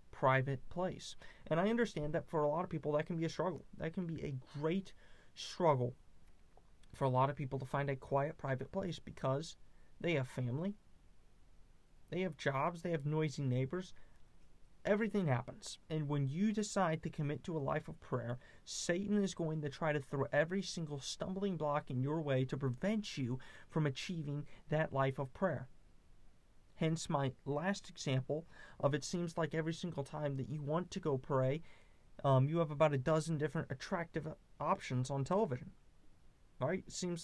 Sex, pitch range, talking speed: male, 130-170 Hz, 180 wpm